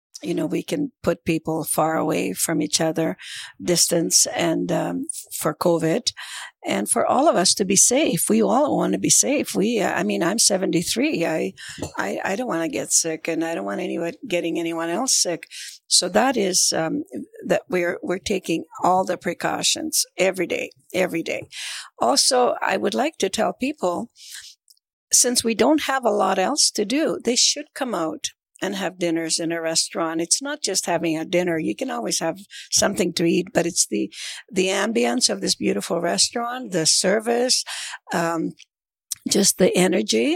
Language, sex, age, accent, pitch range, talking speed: English, female, 60-79, American, 170-250 Hz, 180 wpm